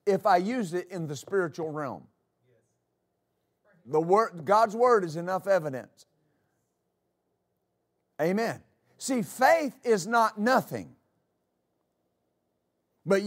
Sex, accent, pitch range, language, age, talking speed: male, American, 180-255 Hz, English, 50-69, 100 wpm